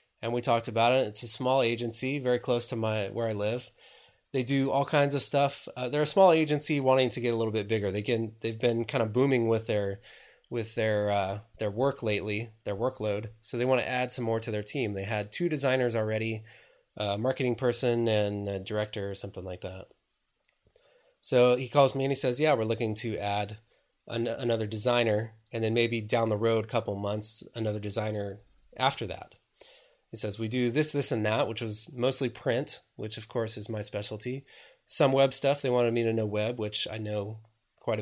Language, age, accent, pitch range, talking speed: English, 20-39, American, 105-130 Hz, 215 wpm